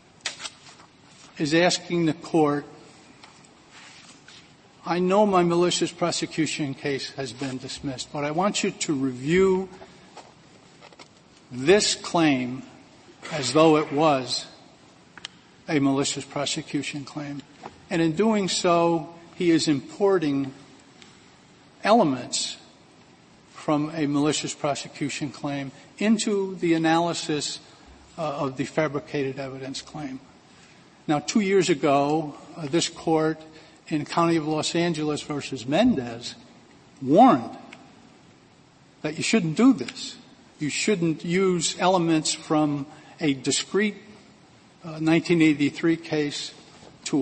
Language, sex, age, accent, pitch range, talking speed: English, male, 50-69, American, 140-170 Hz, 105 wpm